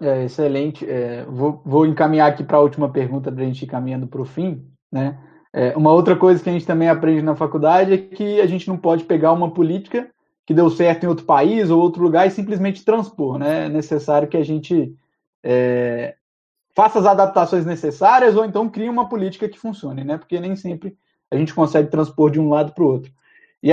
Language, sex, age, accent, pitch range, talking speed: Portuguese, male, 20-39, Brazilian, 155-200 Hz, 215 wpm